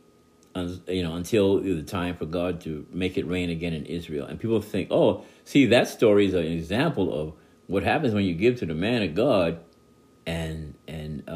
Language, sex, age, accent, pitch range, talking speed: English, male, 50-69, American, 85-115 Hz, 195 wpm